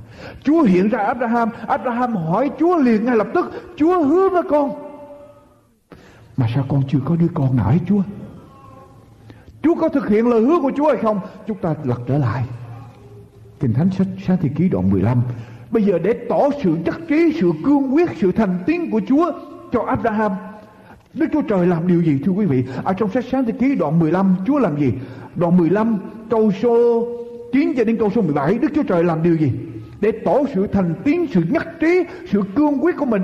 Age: 60-79